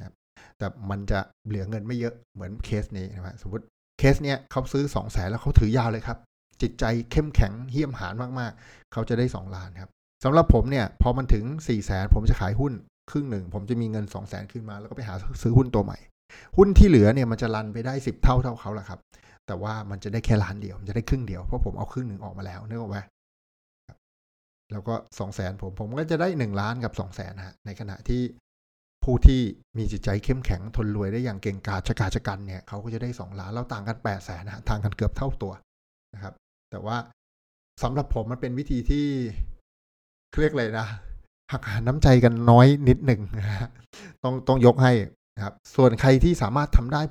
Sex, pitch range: male, 100-125 Hz